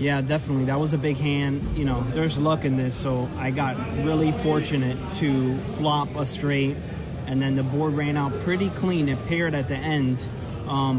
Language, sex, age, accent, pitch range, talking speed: English, male, 30-49, American, 130-145 Hz, 195 wpm